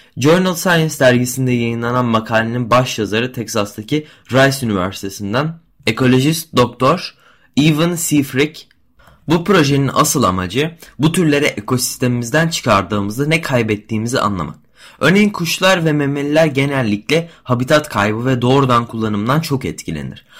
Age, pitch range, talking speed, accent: 20-39, 110-150 Hz, 110 wpm, native